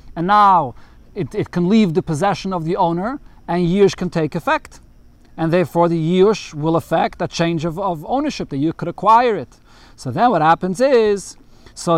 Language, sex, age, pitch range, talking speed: English, male, 40-59, 165-220 Hz, 190 wpm